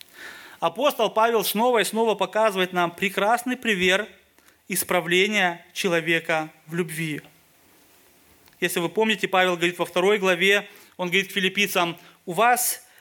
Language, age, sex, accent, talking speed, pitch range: Russian, 30-49, male, native, 120 wpm, 180-225 Hz